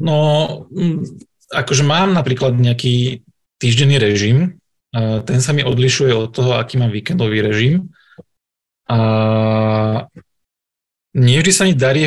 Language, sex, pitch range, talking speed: Slovak, male, 120-135 Hz, 105 wpm